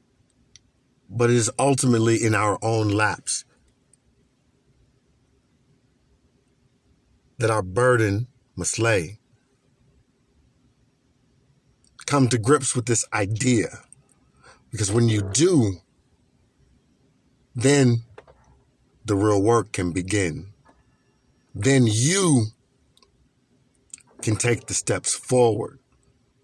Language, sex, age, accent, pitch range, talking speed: English, male, 50-69, American, 110-130 Hz, 80 wpm